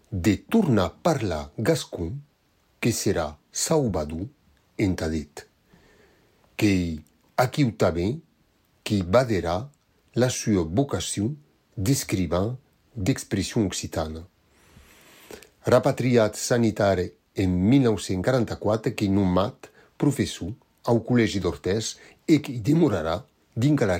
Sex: male